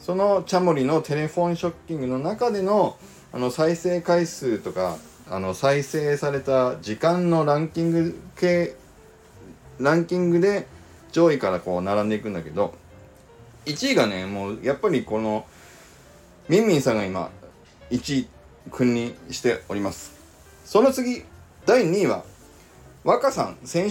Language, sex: Japanese, male